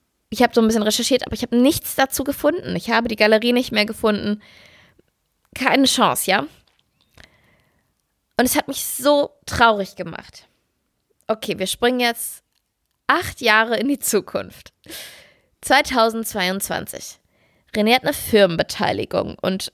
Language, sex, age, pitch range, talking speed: German, female, 20-39, 205-250 Hz, 135 wpm